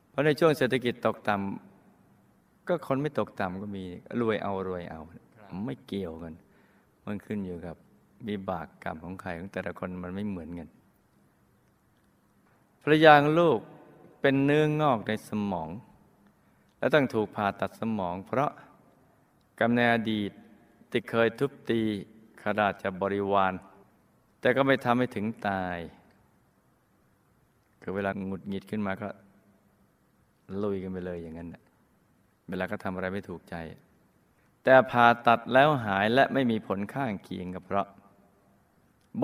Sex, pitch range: male, 95-115 Hz